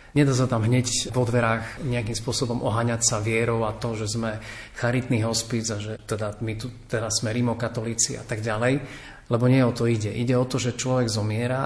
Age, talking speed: 40-59, 200 wpm